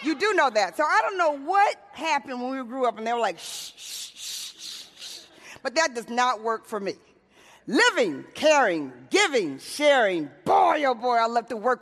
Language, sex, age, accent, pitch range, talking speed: English, female, 40-59, American, 230-320 Hz, 205 wpm